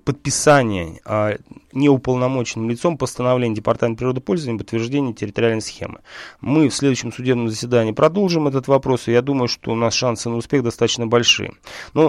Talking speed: 155 wpm